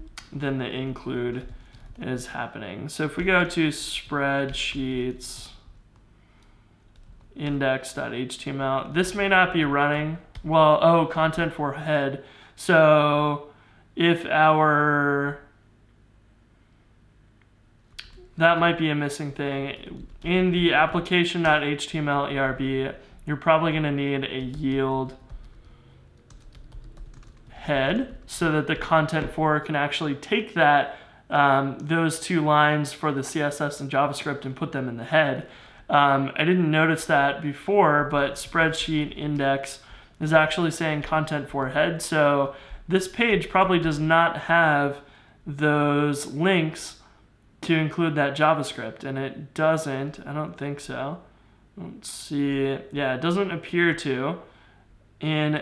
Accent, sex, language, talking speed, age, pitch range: American, male, English, 120 wpm, 20-39, 130-160 Hz